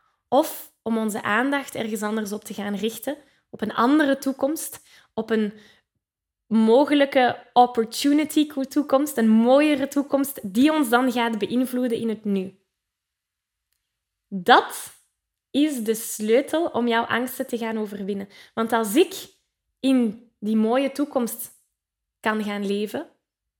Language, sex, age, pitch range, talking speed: Dutch, female, 10-29, 210-265 Hz, 125 wpm